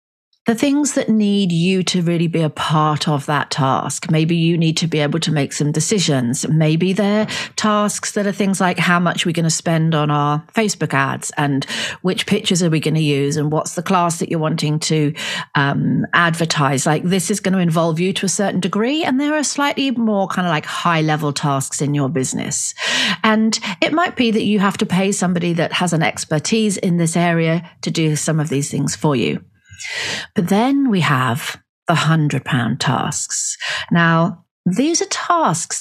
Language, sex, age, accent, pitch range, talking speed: English, female, 40-59, British, 155-210 Hz, 200 wpm